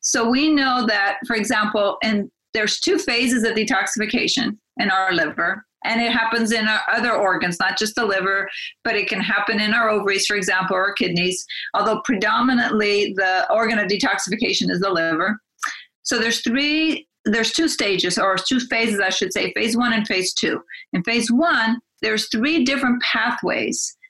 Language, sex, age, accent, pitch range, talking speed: English, female, 40-59, American, 205-250 Hz, 175 wpm